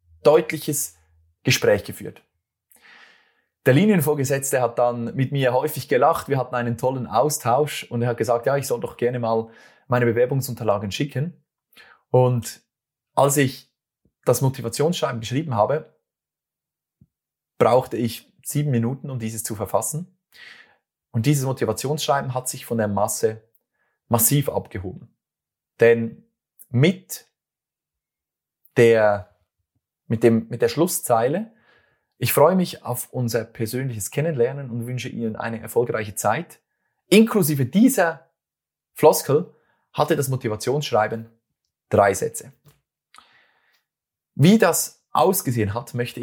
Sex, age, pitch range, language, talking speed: male, 30-49, 115-150 Hz, German, 115 wpm